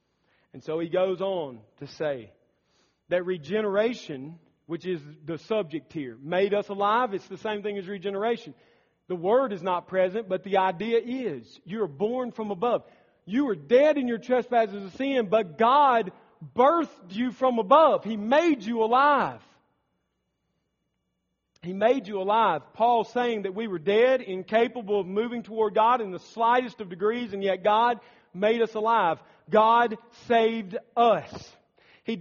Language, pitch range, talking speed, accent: English, 180-235 Hz, 160 wpm, American